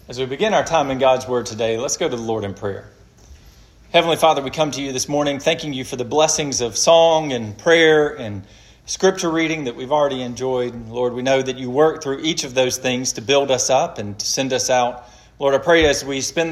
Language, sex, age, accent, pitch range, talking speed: English, male, 40-59, American, 120-155 Hz, 240 wpm